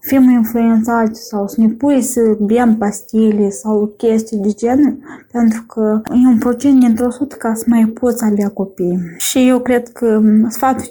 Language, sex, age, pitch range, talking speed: Romanian, female, 20-39, 215-250 Hz, 165 wpm